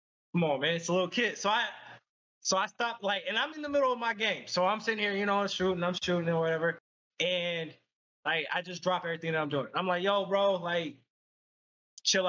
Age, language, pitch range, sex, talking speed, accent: 20-39, English, 170-210 Hz, male, 235 wpm, American